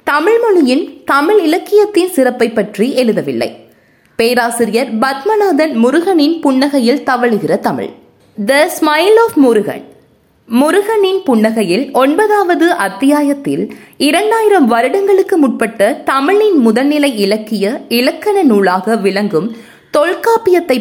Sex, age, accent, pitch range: female, 20-39, native, 235-360 Hz